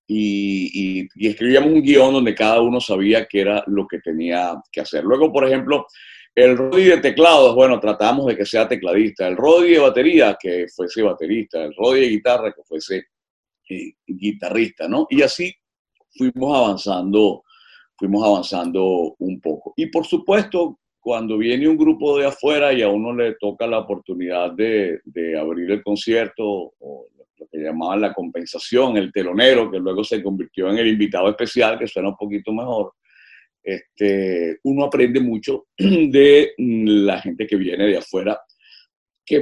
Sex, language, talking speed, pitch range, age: male, Spanish, 165 wpm, 100-145 Hz, 50-69